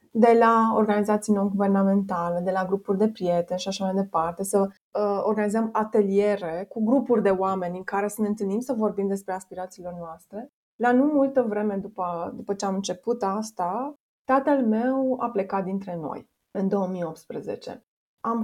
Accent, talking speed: native, 165 wpm